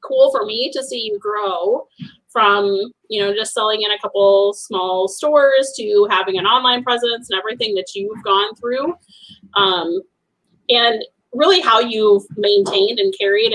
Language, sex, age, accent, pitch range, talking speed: English, female, 30-49, American, 195-275 Hz, 160 wpm